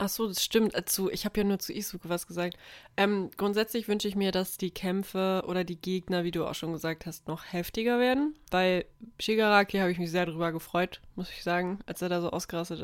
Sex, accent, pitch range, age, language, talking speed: female, German, 170-210 Hz, 20-39, German, 220 wpm